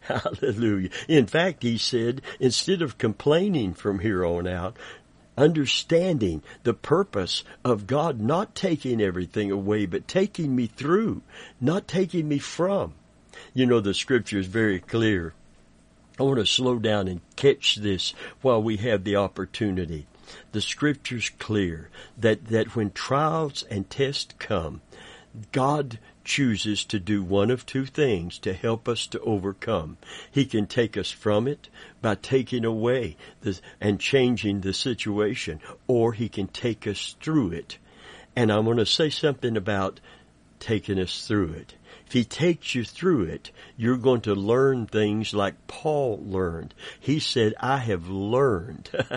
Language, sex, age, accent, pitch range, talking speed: English, male, 60-79, American, 100-135 Hz, 150 wpm